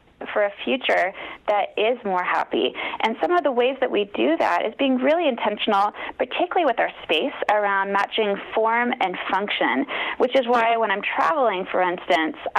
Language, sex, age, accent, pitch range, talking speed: English, female, 30-49, American, 200-270 Hz, 175 wpm